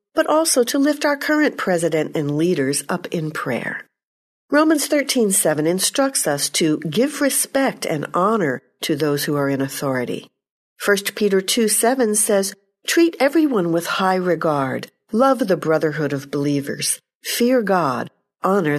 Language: English